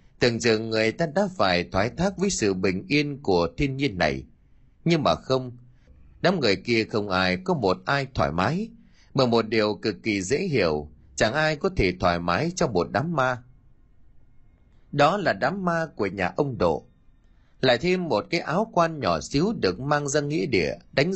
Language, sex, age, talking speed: Vietnamese, male, 30-49, 195 wpm